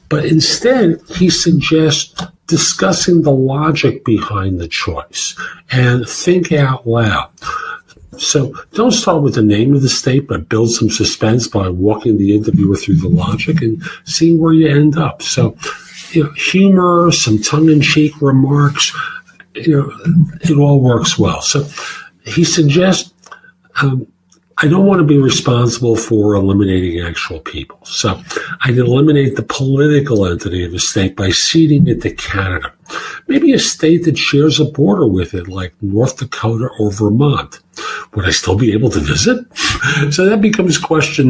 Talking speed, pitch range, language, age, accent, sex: 155 wpm, 115-165 Hz, English, 50-69, American, male